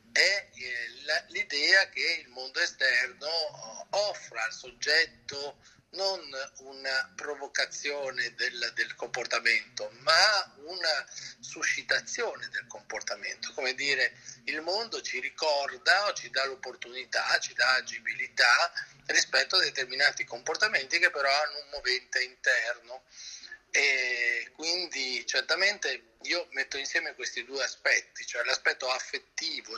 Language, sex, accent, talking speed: Italian, male, native, 110 wpm